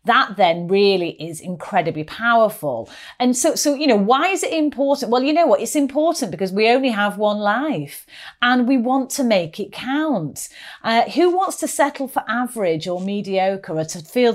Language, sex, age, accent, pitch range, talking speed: English, female, 40-59, British, 185-260 Hz, 190 wpm